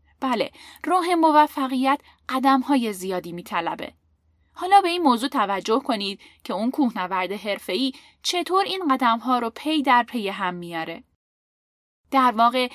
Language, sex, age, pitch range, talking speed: Persian, female, 10-29, 225-300 Hz, 135 wpm